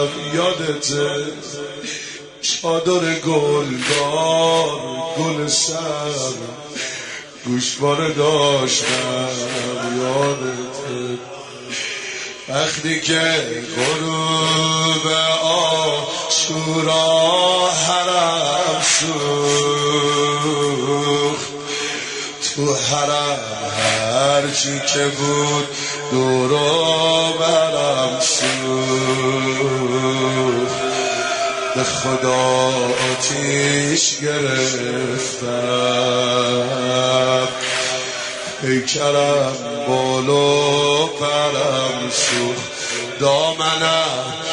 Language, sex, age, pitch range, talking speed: Persian, male, 30-49, 130-160 Hz, 45 wpm